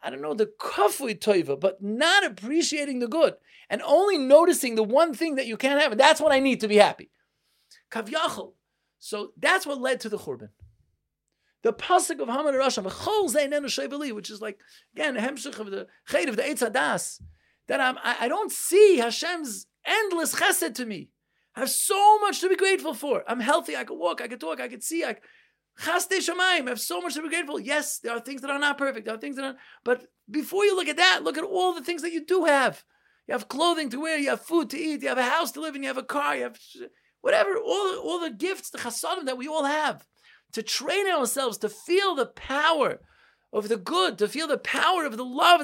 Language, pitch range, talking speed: English, 235-335 Hz, 225 wpm